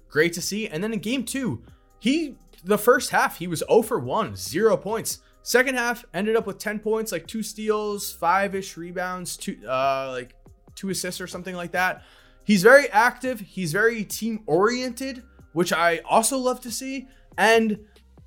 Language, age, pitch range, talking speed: English, 20-39, 160-225 Hz, 175 wpm